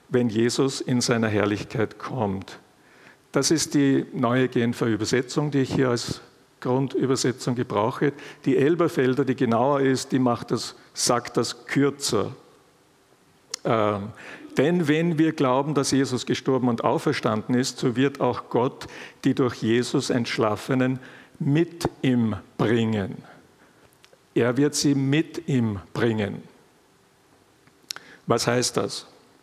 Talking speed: 120 wpm